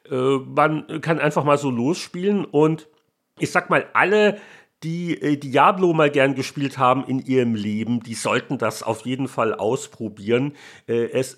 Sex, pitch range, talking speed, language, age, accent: male, 135-160 Hz, 150 wpm, German, 40-59, German